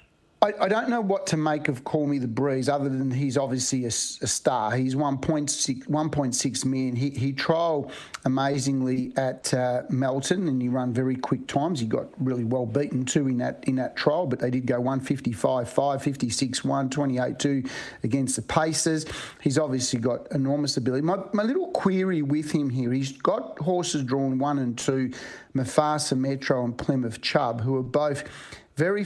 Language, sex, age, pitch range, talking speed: English, male, 40-59, 130-150 Hz, 205 wpm